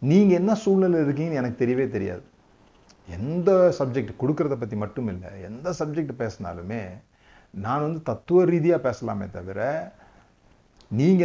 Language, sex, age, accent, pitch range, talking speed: Tamil, male, 30-49, native, 100-155 Hz, 125 wpm